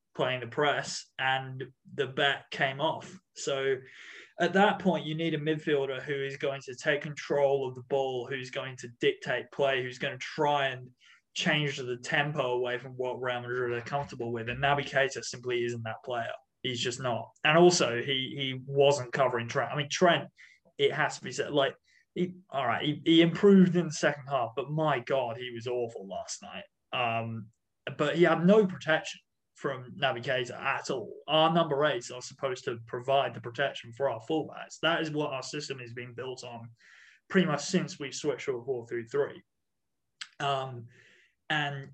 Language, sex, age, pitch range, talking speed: English, male, 20-39, 125-155 Hz, 190 wpm